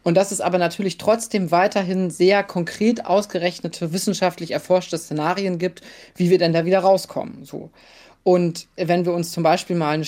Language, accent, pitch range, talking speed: German, German, 165-195 Hz, 175 wpm